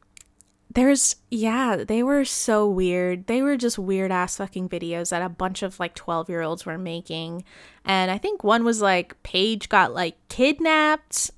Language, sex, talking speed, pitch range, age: English, female, 165 wpm, 175-210 Hz, 20-39